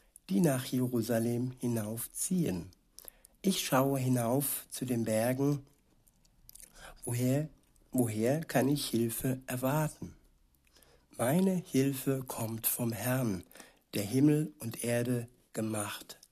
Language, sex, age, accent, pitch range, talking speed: German, male, 60-79, German, 120-145 Hz, 95 wpm